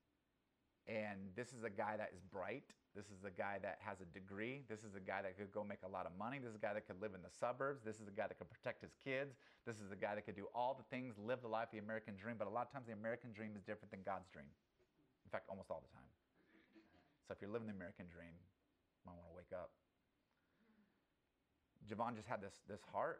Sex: male